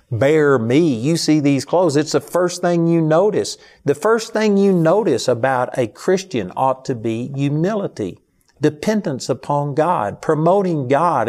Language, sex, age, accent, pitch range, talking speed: English, male, 50-69, American, 130-170 Hz, 155 wpm